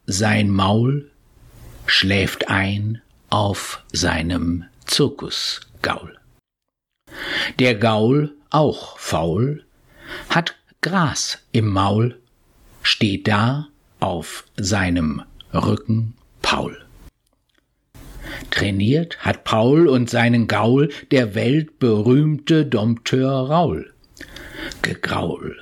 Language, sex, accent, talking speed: German, male, German, 75 wpm